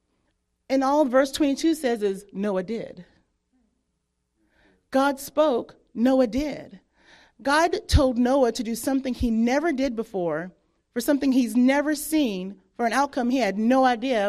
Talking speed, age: 145 wpm, 30-49